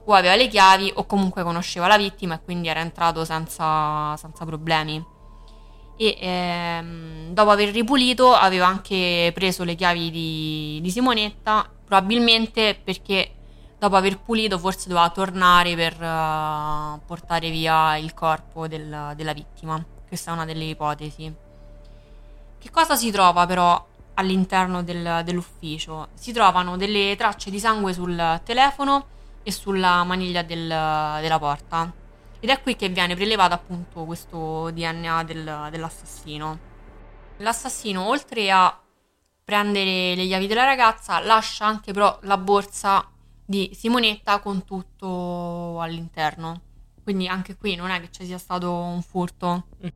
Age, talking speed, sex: 20-39, 130 wpm, female